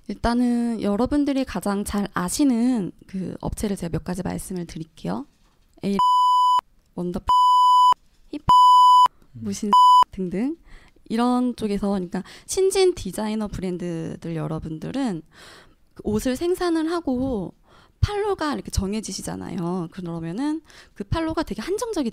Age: 20-39